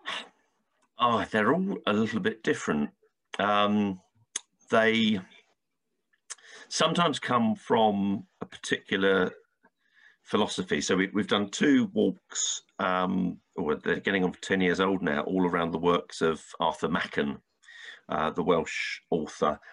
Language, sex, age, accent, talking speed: English, male, 50-69, British, 130 wpm